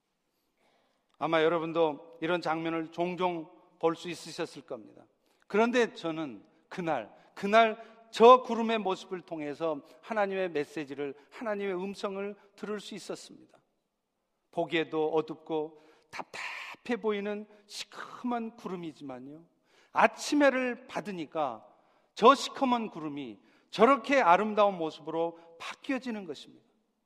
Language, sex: Korean, male